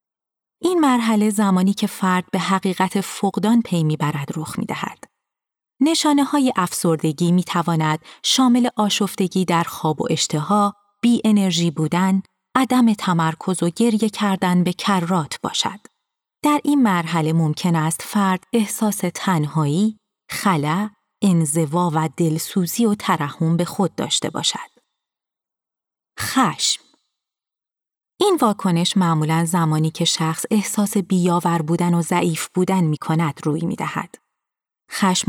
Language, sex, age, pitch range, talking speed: Persian, female, 30-49, 165-210 Hz, 120 wpm